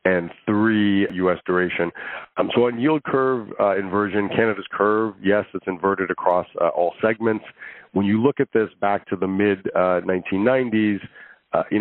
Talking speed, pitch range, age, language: 160 wpm, 90-110 Hz, 40-59, English